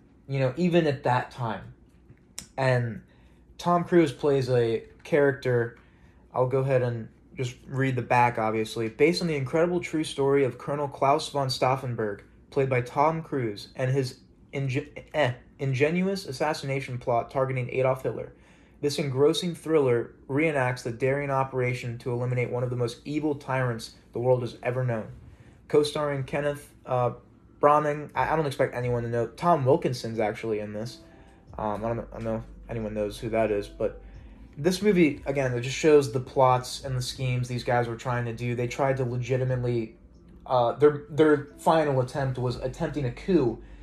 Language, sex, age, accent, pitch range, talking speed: English, male, 20-39, American, 120-145 Hz, 170 wpm